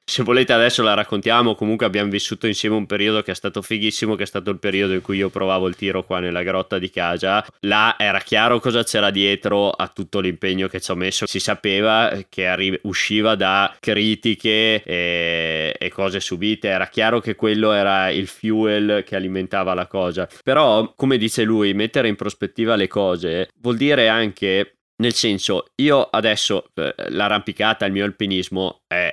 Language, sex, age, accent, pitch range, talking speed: Italian, male, 20-39, native, 95-110 Hz, 175 wpm